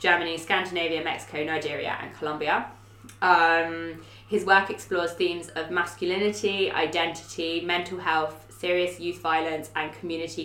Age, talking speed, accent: 20-39, 120 wpm, British